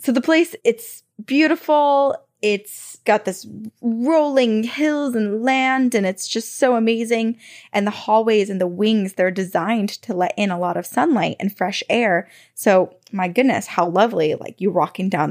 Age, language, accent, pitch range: 20-39, English, American, 190-245 Hz